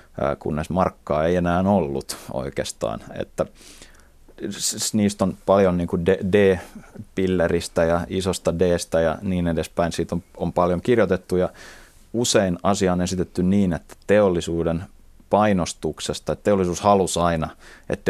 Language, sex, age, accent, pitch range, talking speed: Finnish, male, 30-49, native, 80-95 Hz, 115 wpm